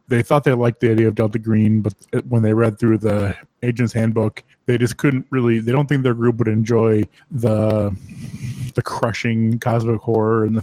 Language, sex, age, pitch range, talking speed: English, male, 20-39, 105-120 Hz, 200 wpm